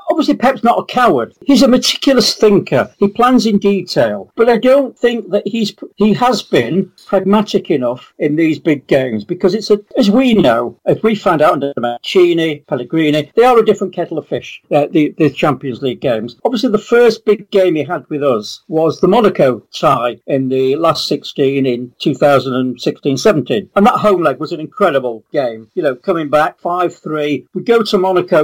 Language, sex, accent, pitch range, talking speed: English, male, British, 145-215 Hz, 190 wpm